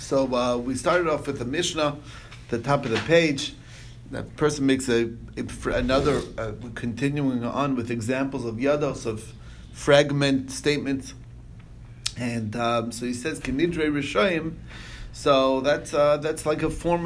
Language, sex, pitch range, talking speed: English, male, 120-140 Hz, 145 wpm